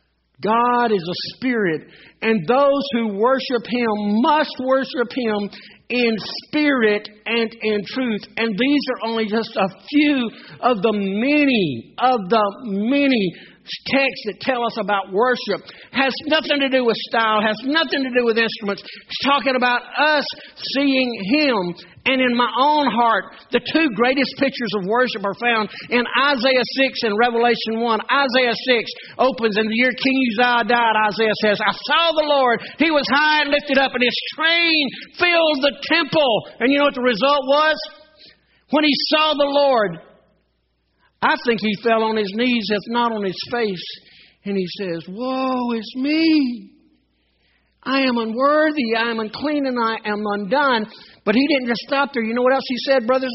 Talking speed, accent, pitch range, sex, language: 170 wpm, American, 215-270 Hz, male, English